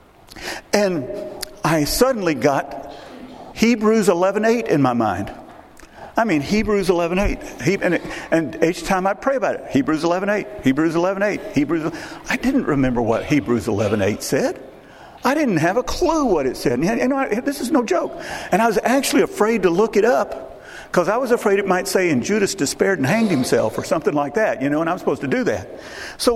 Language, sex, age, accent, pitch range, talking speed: English, male, 50-69, American, 165-245 Hz, 185 wpm